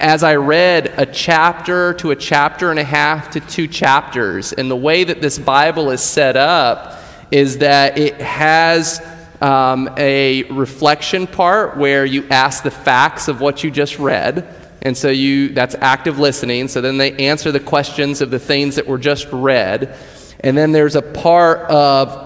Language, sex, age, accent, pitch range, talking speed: English, male, 30-49, American, 135-160 Hz, 180 wpm